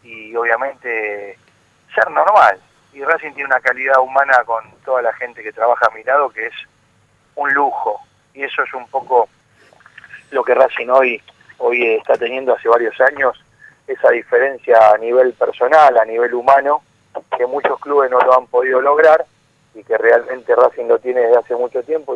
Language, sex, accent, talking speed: Spanish, male, Argentinian, 175 wpm